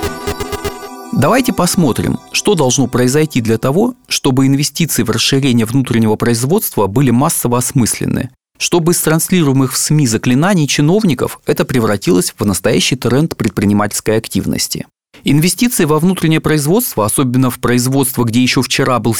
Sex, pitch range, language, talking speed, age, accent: male, 115-160 Hz, Russian, 130 wpm, 40-59, native